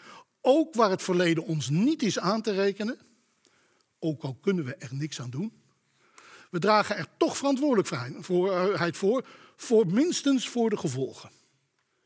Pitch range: 160-215 Hz